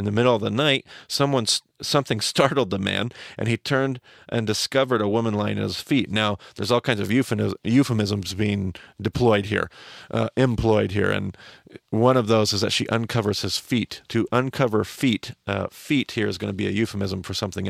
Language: English